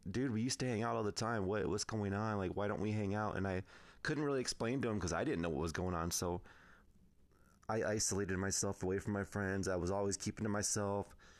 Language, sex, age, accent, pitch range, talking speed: English, male, 30-49, American, 95-110 Hz, 255 wpm